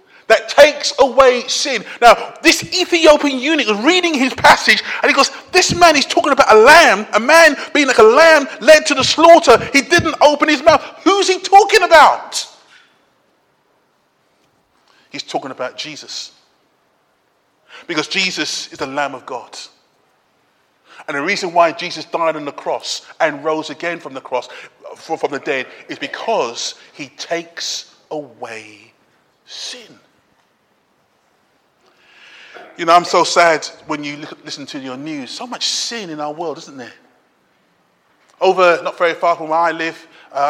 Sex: male